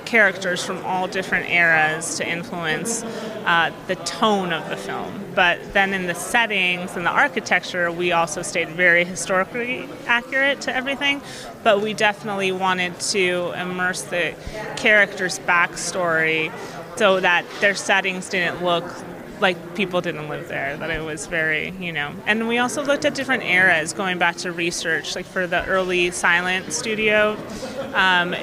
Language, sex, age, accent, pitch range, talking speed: English, female, 30-49, American, 170-210 Hz, 155 wpm